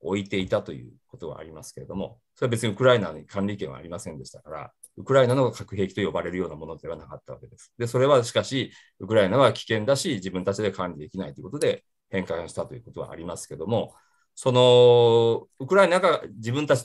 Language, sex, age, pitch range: Japanese, male, 40-59, 95-140 Hz